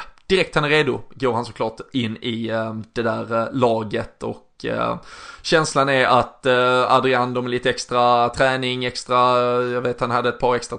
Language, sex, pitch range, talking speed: Swedish, male, 120-130 Hz, 190 wpm